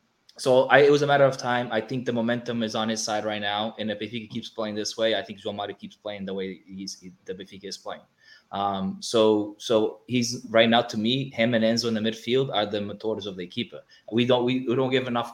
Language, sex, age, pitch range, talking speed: English, male, 20-39, 105-120 Hz, 260 wpm